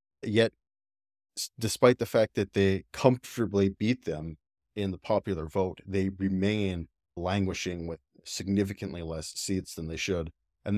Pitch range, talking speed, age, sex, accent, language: 90-105 Hz, 135 wpm, 30-49, male, American, English